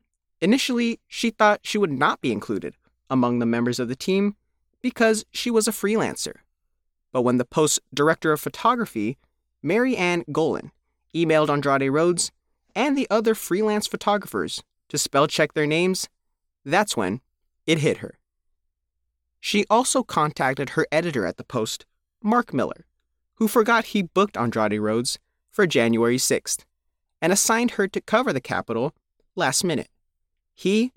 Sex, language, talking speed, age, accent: male, English, 145 wpm, 30-49, American